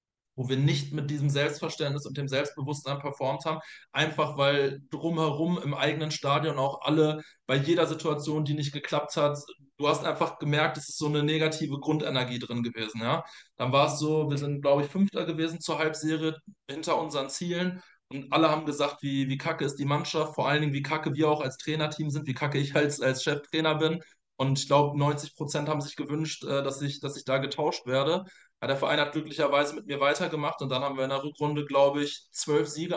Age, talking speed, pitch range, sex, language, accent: 20-39, 200 wpm, 140-155 Hz, male, German, German